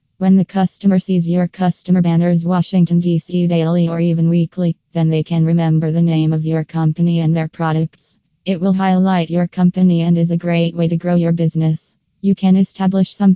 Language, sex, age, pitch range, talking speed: English, female, 20-39, 165-180 Hz, 195 wpm